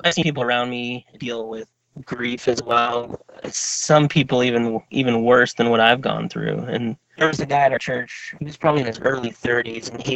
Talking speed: 220 wpm